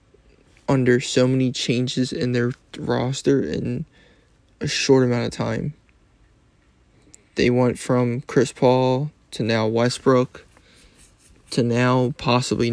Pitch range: 120-135 Hz